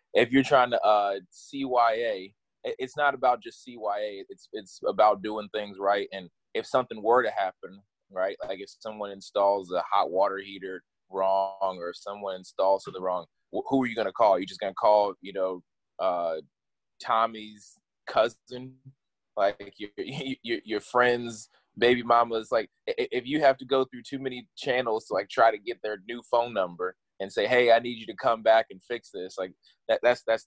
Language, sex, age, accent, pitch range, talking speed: English, male, 20-39, American, 95-125 Hz, 195 wpm